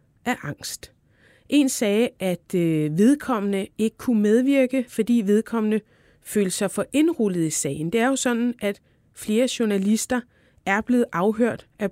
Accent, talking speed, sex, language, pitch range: native, 140 wpm, female, Danish, 190-235 Hz